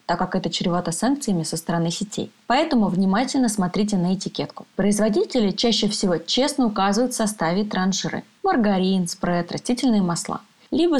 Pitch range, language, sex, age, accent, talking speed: 185-225 Hz, Russian, female, 20-39, native, 140 wpm